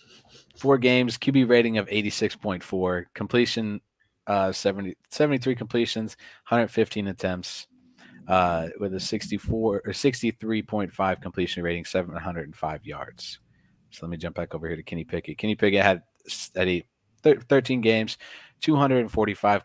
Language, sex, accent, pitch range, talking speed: English, male, American, 95-115 Hz, 125 wpm